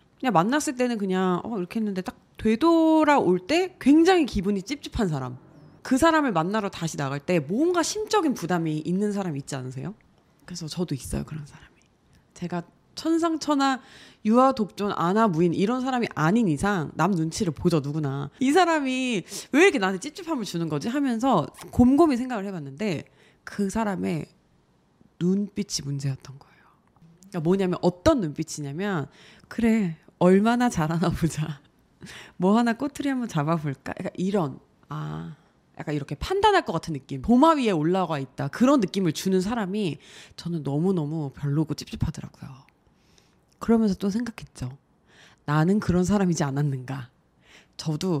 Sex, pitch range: female, 155-230 Hz